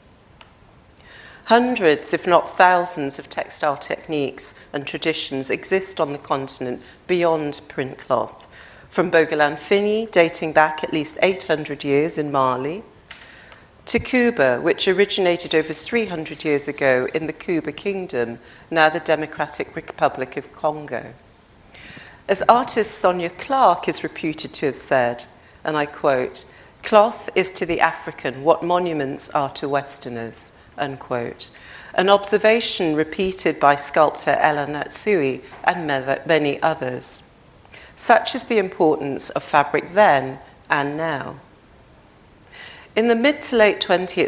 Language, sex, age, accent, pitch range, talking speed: English, female, 40-59, British, 145-190 Hz, 125 wpm